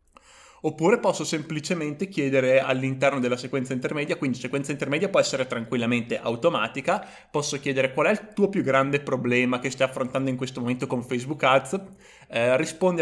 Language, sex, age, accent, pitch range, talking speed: Italian, male, 20-39, native, 125-175 Hz, 160 wpm